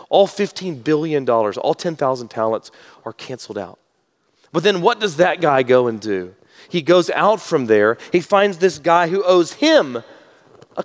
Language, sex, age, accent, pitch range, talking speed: English, male, 40-59, American, 155-220 Hz, 170 wpm